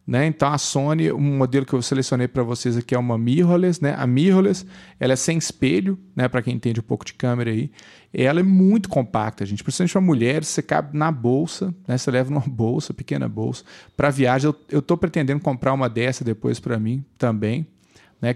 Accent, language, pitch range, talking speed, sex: Brazilian, Portuguese, 125-155 Hz, 210 wpm, male